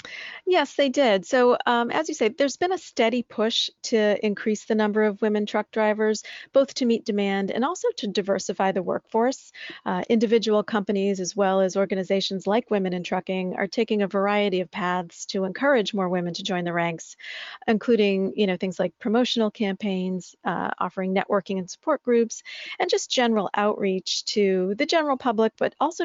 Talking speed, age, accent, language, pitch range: 180 wpm, 40-59, American, English, 195-230 Hz